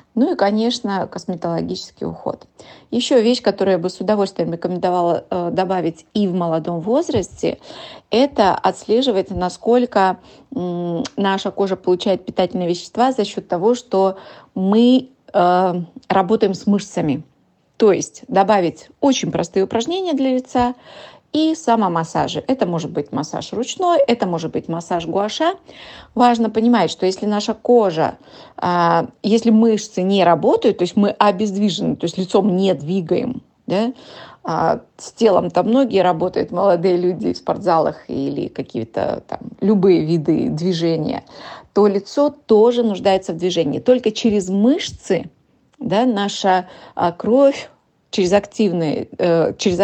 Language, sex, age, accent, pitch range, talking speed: Russian, female, 30-49, native, 180-235 Hz, 125 wpm